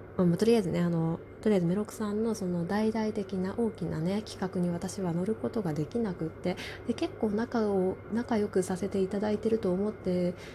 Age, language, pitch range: 20-39, Japanese, 165-210 Hz